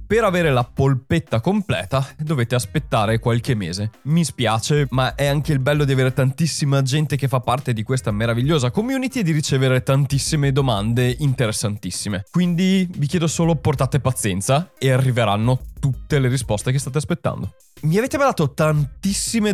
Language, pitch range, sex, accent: Italian, 125-160 Hz, male, native